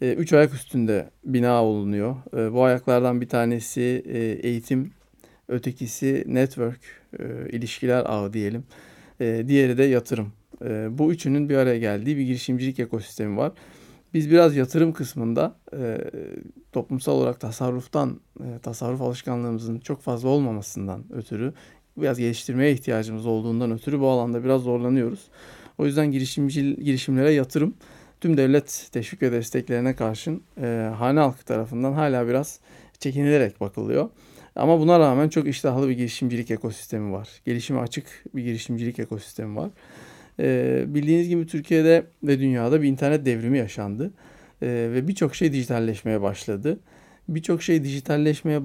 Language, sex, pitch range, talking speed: Turkish, male, 115-145 Hz, 125 wpm